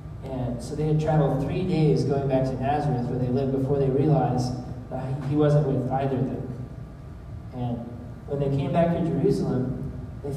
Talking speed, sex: 180 wpm, male